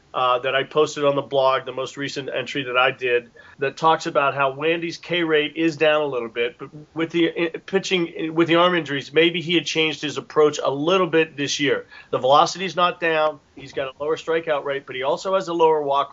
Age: 40-59